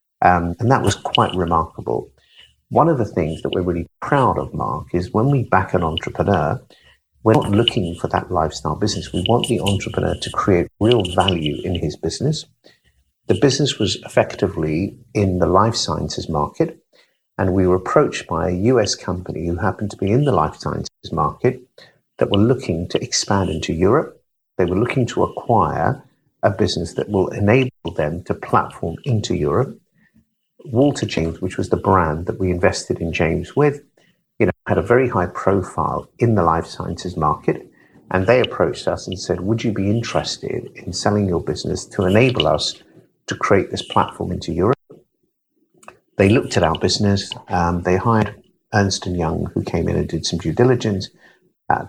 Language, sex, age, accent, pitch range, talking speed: English, male, 50-69, British, 85-115 Hz, 180 wpm